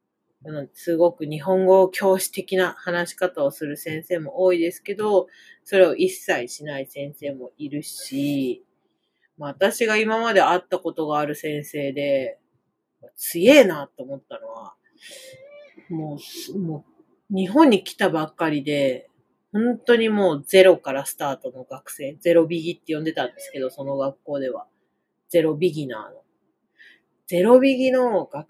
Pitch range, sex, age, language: 150-195 Hz, female, 40-59, Japanese